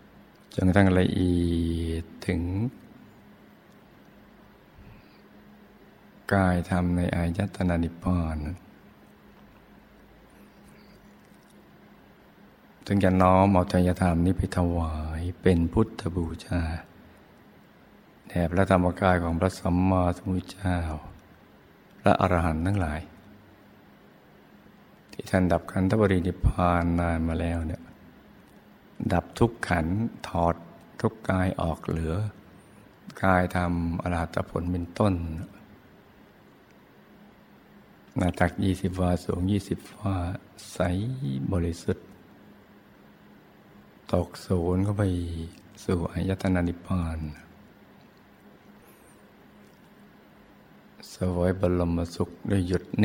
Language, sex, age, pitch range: Thai, male, 60-79, 85-95 Hz